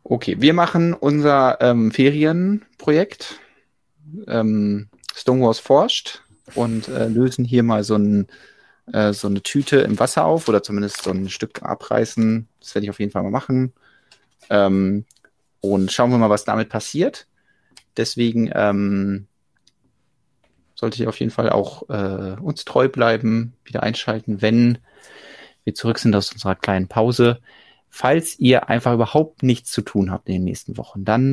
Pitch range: 100-120 Hz